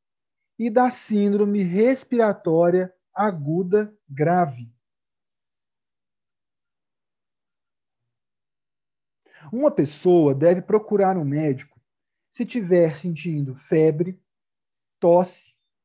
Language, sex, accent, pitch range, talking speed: Portuguese, male, Brazilian, 150-220 Hz, 65 wpm